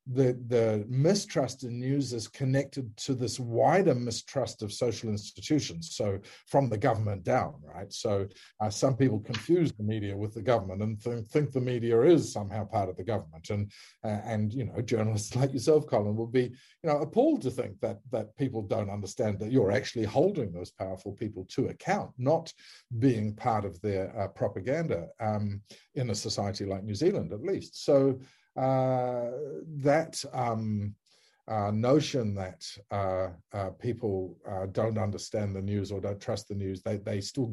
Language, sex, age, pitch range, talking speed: English, male, 50-69, 100-125 Hz, 175 wpm